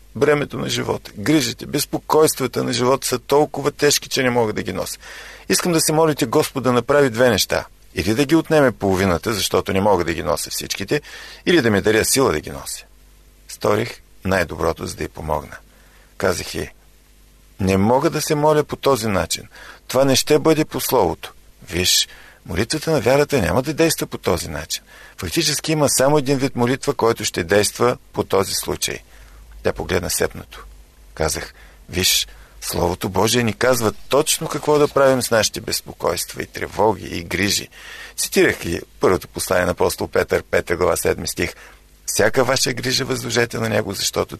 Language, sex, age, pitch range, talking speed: Bulgarian, male, 50-69, 95-145 Hz, 170 wpm